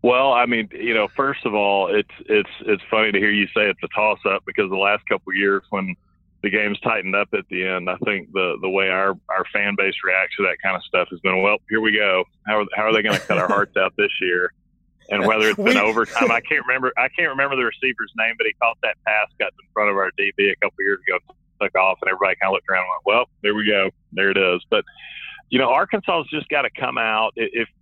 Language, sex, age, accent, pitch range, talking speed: English, male, 30-49, American, 95-110 Hz, 270 wpm